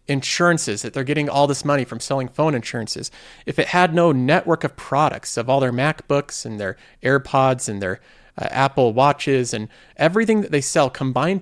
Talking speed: 190 wpm